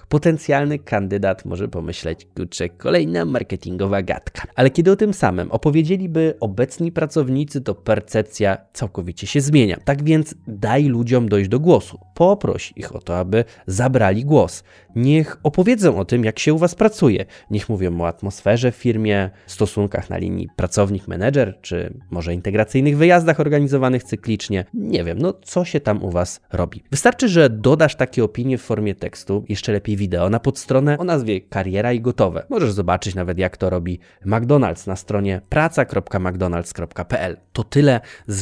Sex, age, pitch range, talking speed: male, 20-39, 95-140 Hz, 155 wpm